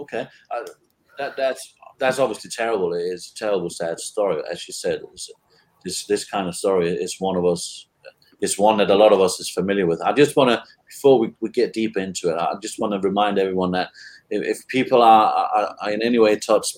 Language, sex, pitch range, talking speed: English, male, 90-140 Hz, 230 wpm